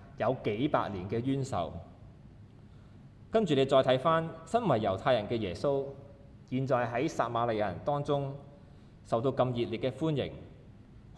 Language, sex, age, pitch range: Chinese, male, 20-39, 105-130 Hz